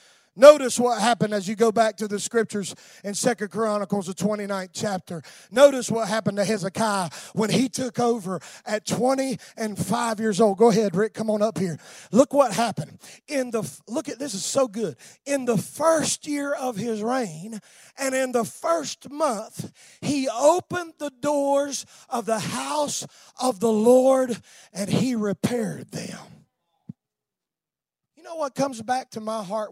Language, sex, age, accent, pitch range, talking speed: English, male, 30-49, American, 195-260 Hz, 165 wpm